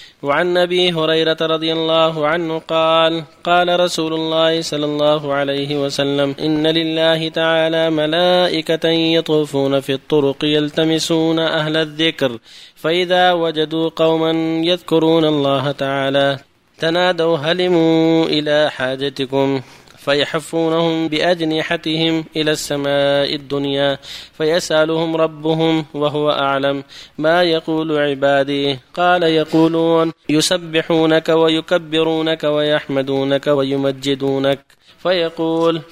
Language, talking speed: Arabic, 90 wpm